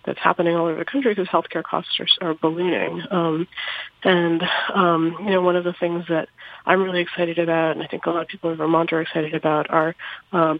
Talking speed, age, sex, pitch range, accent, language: 225 wpm, 30-49, female, 165-185 Hz, American, English